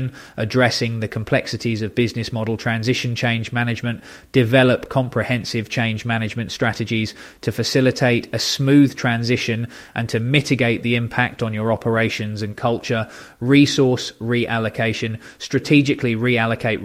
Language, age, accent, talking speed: English, 20-39, British, 120 wpm